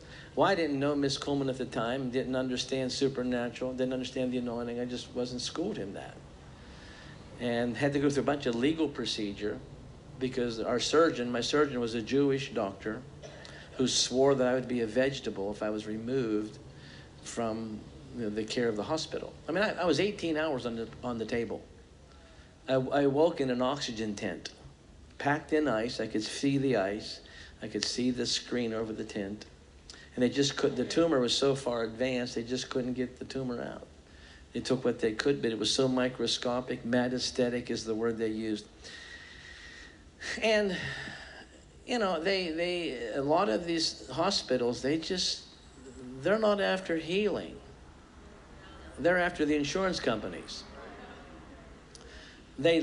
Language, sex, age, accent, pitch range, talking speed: English, male, 50-69, American, 110-140 Hz, 170 wpm